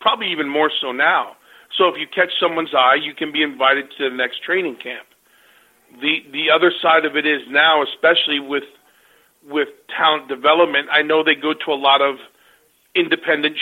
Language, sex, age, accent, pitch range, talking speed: English, male, 40-59, American, 140-170 Hz, 185 wpm